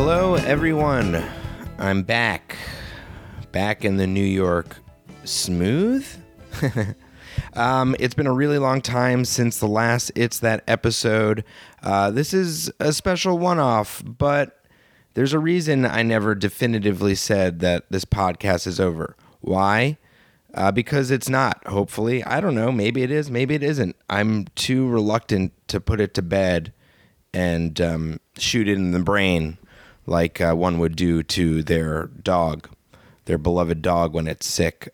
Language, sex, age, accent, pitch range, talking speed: English, male, 30-49, American, 95-125 Hz, 150 wpm